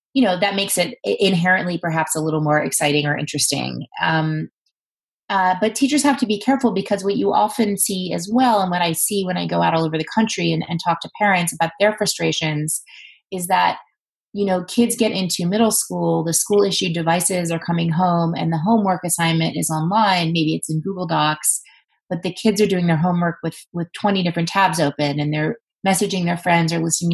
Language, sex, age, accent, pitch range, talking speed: English, female, 30-49, American, 160-195 Hz, 210 wpm